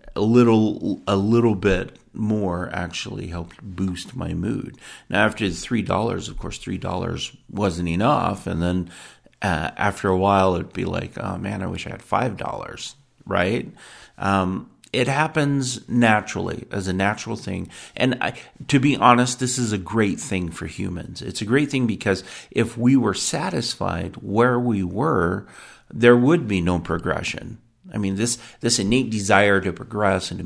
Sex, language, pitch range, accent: male, English, 90-115 Hz, American